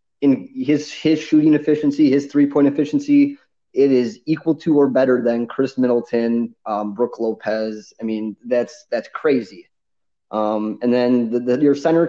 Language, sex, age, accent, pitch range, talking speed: English, male, 20-39, American, 115-145 Hz, 160 wpm